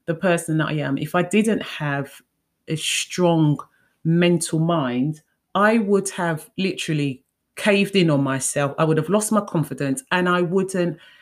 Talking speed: 160 wpm